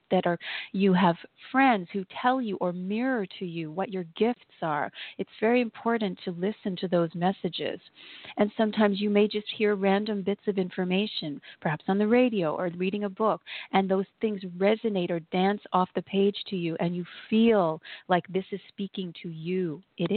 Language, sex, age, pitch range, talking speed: English, female, 40-59, 180-205 Hz, 185 wpm